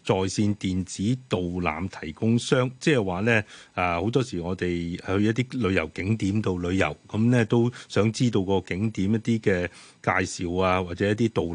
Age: 30-49